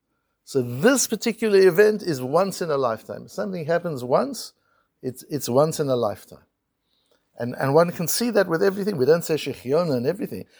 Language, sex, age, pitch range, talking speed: English, male, 60-79, 135-190 Hz, 185 wpm